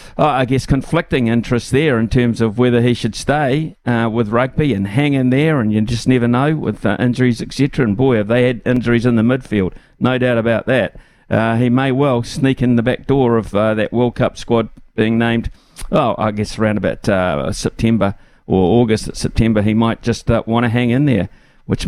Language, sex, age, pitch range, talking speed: English, male, 50-69, 110-130 Hz, 210 wpm